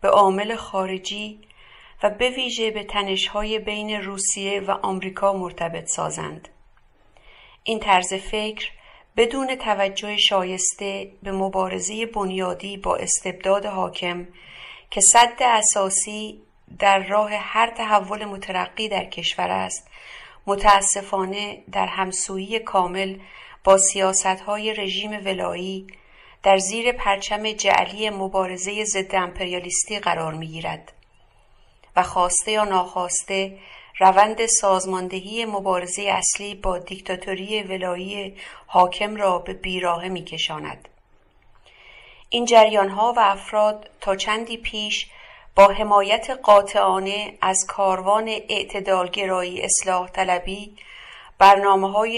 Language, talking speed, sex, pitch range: English, 100 wpm, female, 190-210 Hz